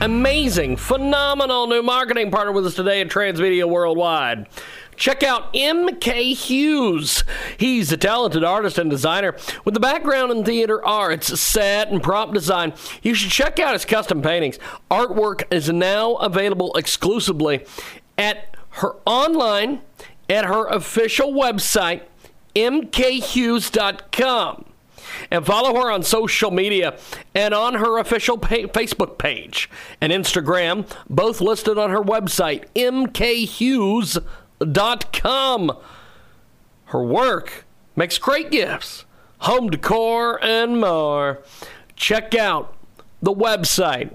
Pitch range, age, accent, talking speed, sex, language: 180-235 Hz, 40-59, American, 115 wpm, male, English